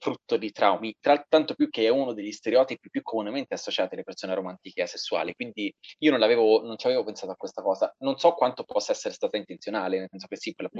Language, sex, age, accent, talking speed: Italian, male, 20-39, native, 235 wpm